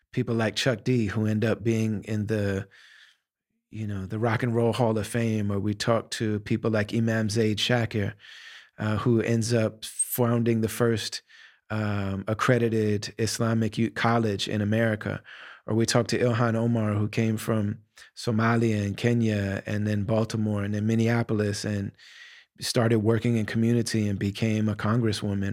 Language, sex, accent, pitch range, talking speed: English, male, American, 105-120 Hz, 160 wpm